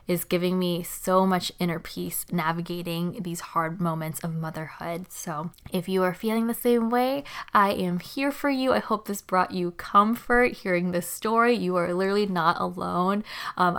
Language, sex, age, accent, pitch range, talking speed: English, female, 20-39, American, 180-215 Hz, 180 wpm